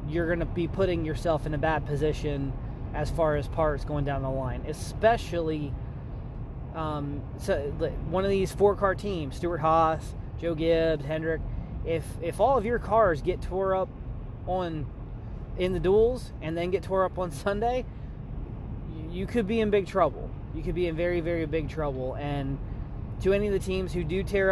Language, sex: English, male